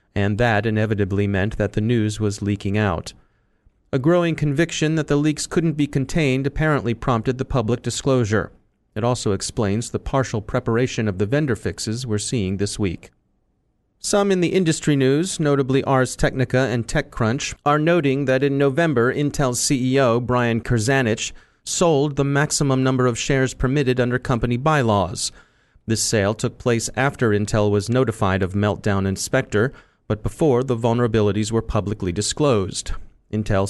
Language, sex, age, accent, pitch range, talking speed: English, male, 30-49, American, 105-135 Hz, 155 wpm